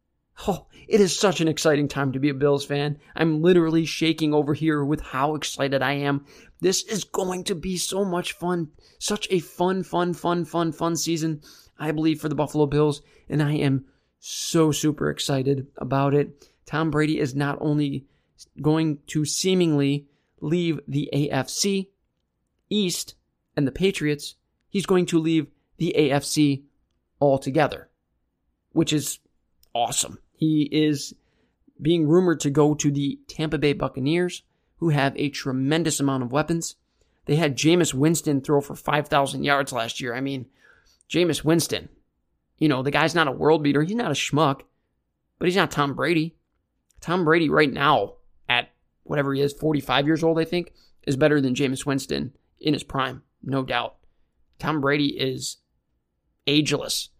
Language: English